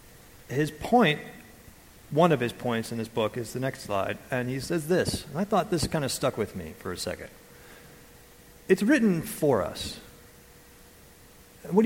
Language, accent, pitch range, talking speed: English, American, 125-170 Hz, 170 wpm